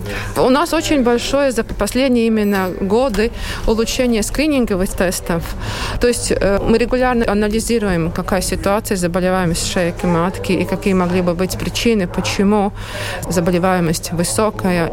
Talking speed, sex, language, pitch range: 120 wpm, female, Russian, 180-215 Hz